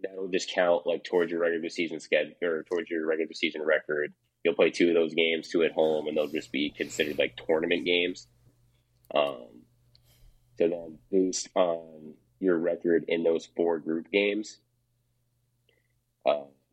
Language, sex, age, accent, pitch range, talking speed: English, male, 20-39, American, 85-120 Hz, 160 wpm